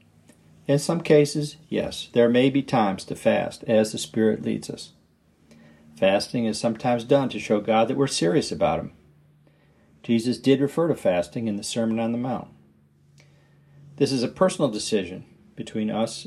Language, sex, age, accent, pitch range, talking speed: English, male, 50-69, American, 105-135 Hz, 165 wpm